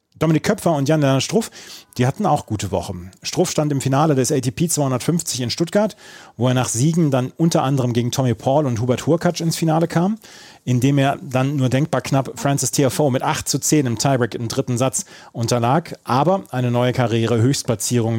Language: German